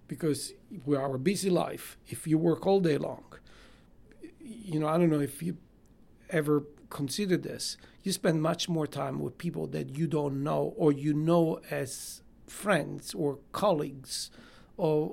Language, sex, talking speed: English, male, 160 wpm